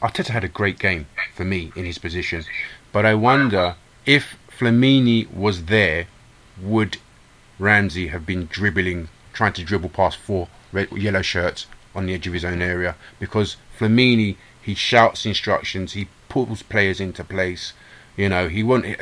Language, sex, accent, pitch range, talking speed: English, male, British, 90-110 Hz, 160 wpm